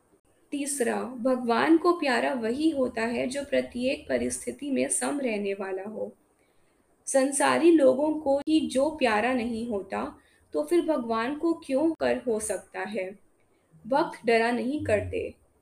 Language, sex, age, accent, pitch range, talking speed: Hindi, female, 20-39, native, 215-275 Hz, 140 wpm